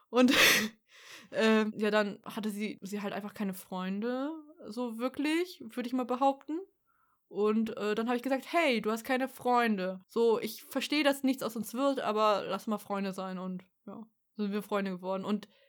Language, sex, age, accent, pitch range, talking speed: German, female, 20-39, German, 210-245 Hz, 185 wpm